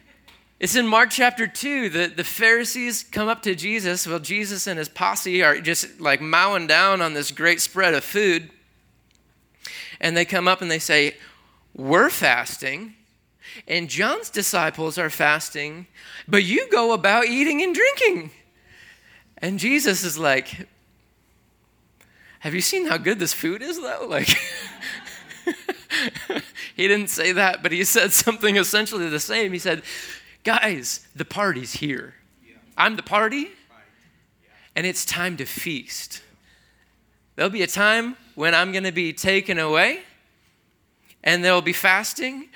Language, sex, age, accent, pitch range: Japanese, male, 20-39, American, 170-225 Hz